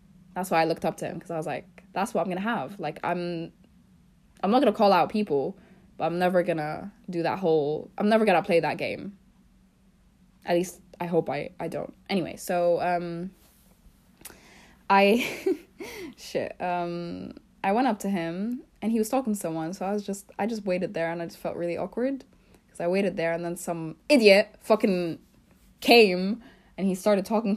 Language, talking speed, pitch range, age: English, 200 wpm, 170-210 Hz, 10-29